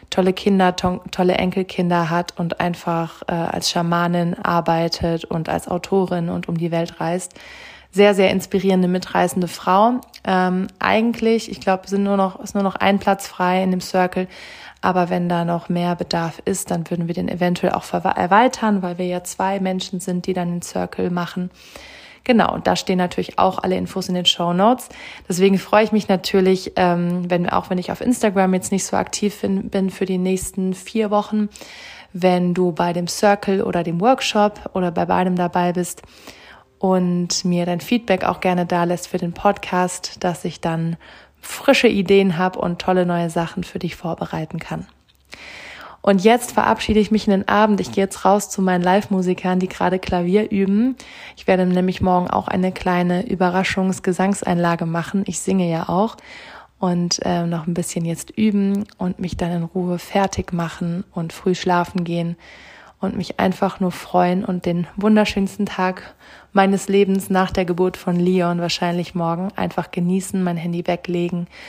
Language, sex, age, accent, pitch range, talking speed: German, female, 30-49, German, 175-195 Hz, 170 wpm